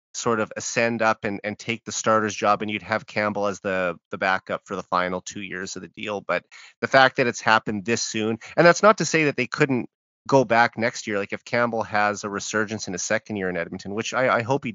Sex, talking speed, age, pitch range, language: male, 255 wpm, 30-49, 100-125 Hz, English